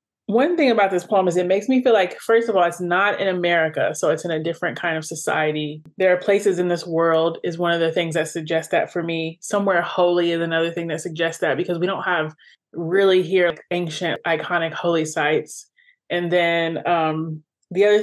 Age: 20-39